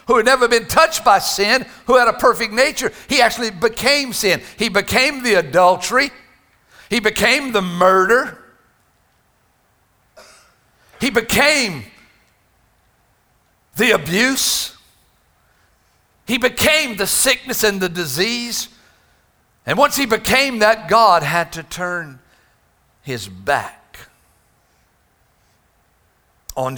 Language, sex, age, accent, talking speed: English, male, 60-79, American, 105 wpm